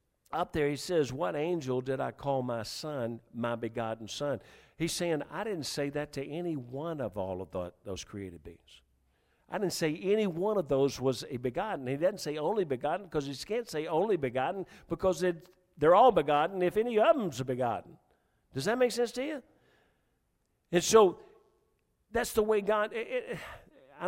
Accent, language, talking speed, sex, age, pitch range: American, English, 190 wpm, male, 50-69, 155-220 Hz